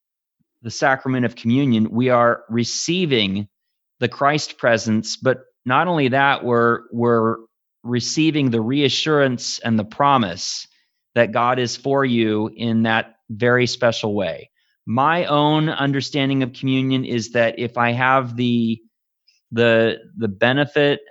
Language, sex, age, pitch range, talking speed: English, male, 30-49, 115-135 Hz, 130 wpm